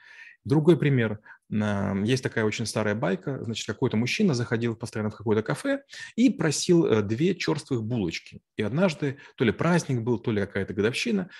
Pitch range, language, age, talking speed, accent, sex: 110-145 Hz, Russian, 30-49, 160 wpm, native, male